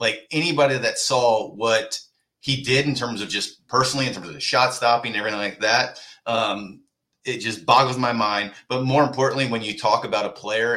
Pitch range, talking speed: 110-130 Hz, 205 wpm